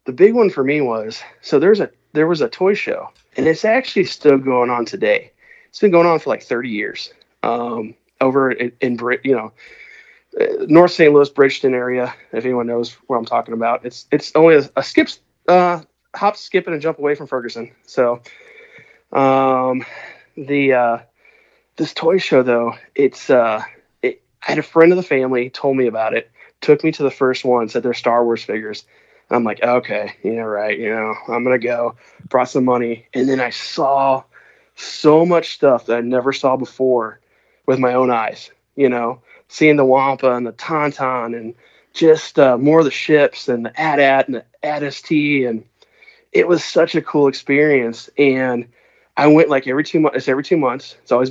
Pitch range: 125-155 Hz